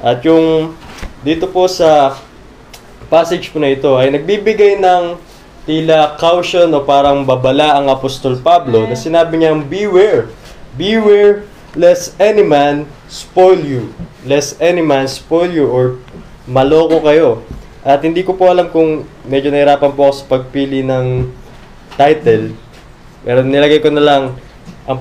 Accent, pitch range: native, 135-175 Hz